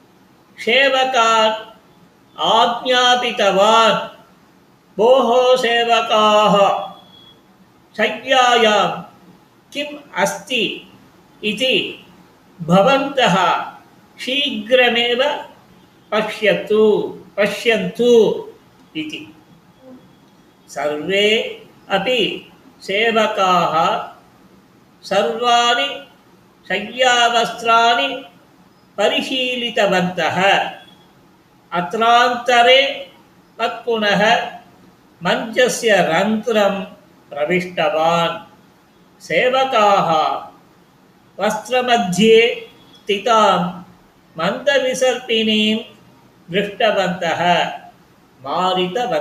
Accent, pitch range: native, 195-245 Hz